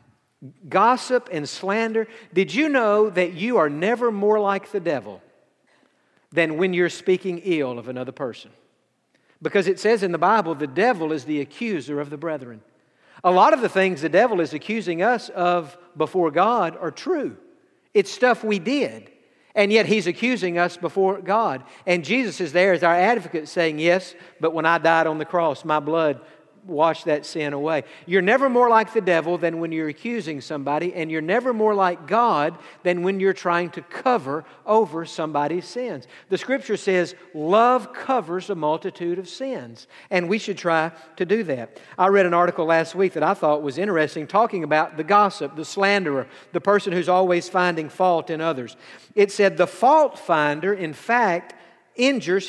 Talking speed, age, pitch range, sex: 180 wpm, 50-69, 160-210 Hz, male